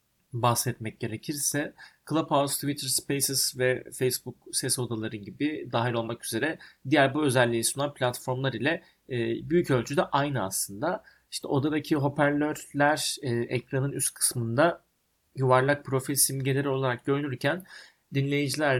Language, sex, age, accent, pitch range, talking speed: Turkish, male, 30-49, native, 120-145 Hz, 110 wpm